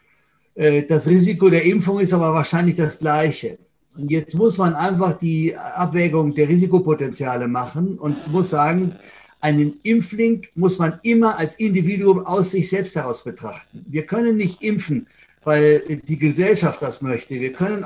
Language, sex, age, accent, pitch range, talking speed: German, male, 60-79, German, 150-190 Hz, 150 wpm